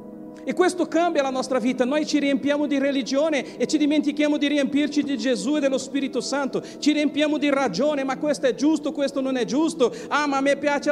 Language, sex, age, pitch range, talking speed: Italian, male, 50-69, 205-285 Hz, 215 wpm